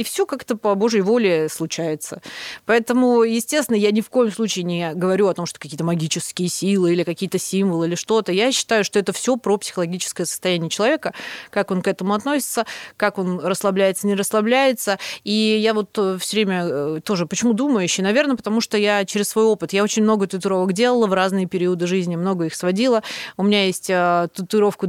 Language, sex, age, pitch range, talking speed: Russian, female, 30-49, 175-225 Hz, 190 wpm